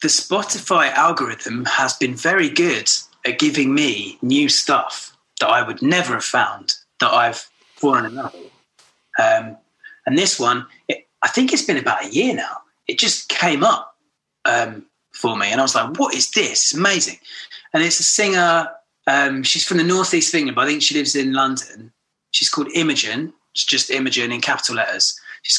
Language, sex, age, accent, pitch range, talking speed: English, male, 30-49, British, 135-195 Hz, 185 wpm